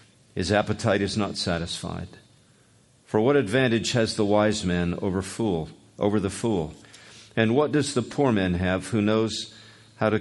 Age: 50-69